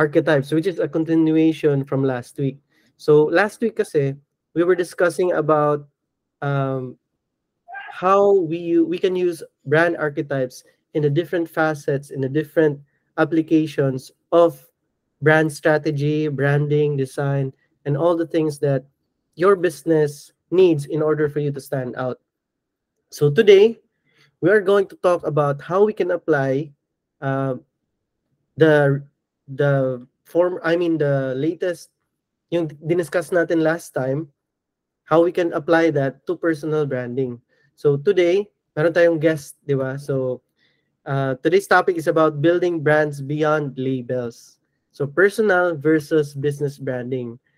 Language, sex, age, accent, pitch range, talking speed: Filipino, male, 20-39, native, 140-170 Hz, 130 wpm